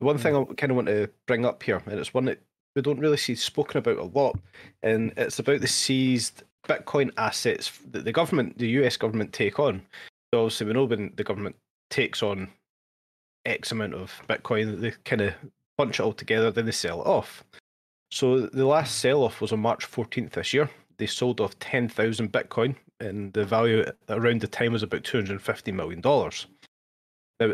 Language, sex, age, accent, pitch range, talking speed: English, male, 20-39, British, 105-125 Hz, 190 wpm